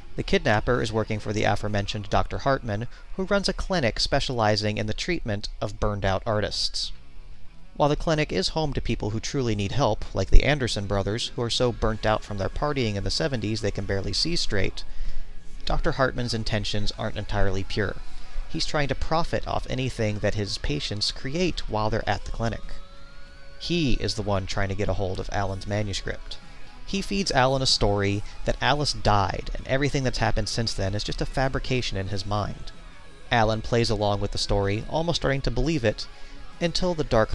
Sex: male